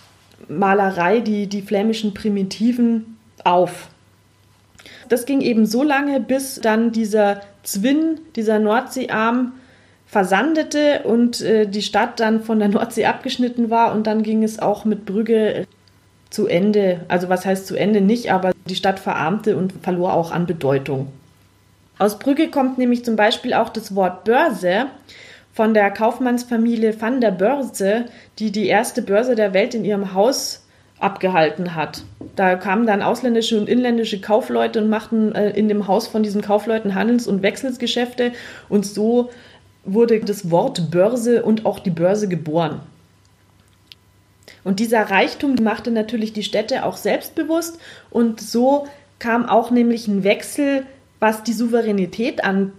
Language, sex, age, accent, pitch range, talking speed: German, female, 20-39, German, 190-235 Hz, 145 wpm